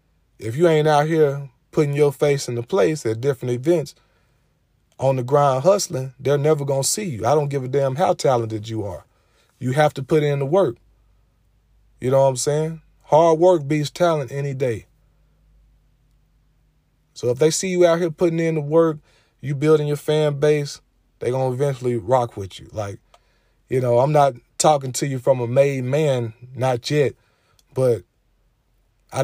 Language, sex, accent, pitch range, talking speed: English, male, American, 115-145 Hz, 185 wpm